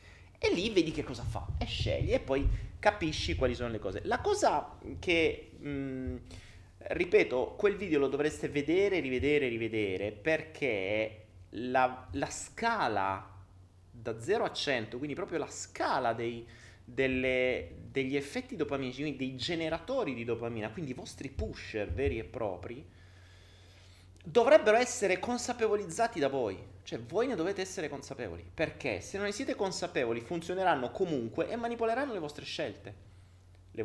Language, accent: Italian, native